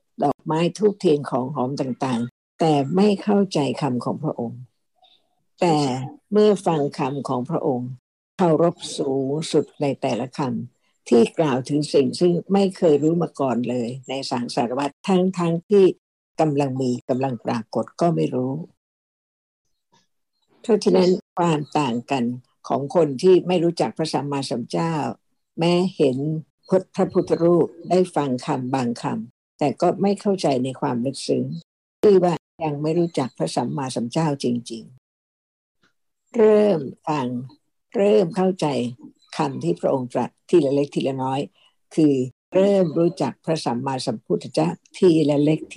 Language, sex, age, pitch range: Thai, female, 60-79, 135-180 Hz